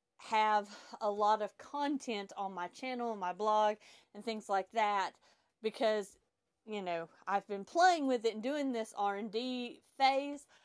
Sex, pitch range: female, 205-255 Hz